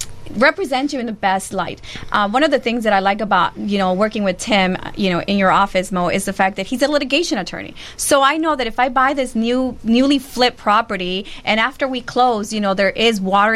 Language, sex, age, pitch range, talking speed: English, female, 30-49, 210-280 Hz, 245 wpm